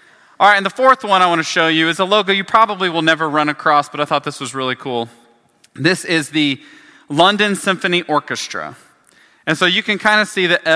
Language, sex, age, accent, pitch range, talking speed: English, male, 30-49, American, 135-180 Hz, 220 wpm